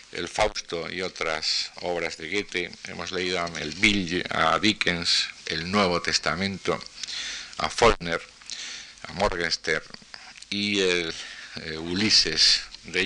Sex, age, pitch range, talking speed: male, 50-69, 85-100 Hz, 115 wpm